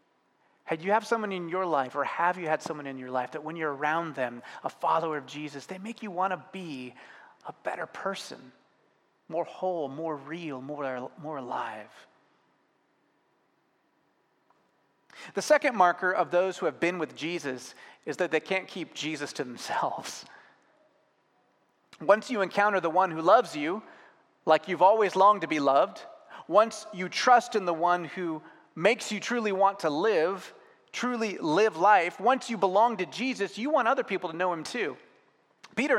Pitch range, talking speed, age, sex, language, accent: 155-210 Hz, 170 wpm, 30-49, male, English, American